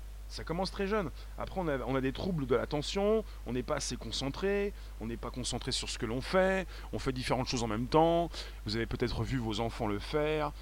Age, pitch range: 30-49, 95-120 Hz